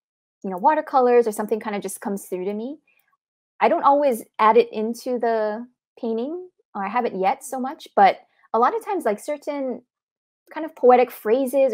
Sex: female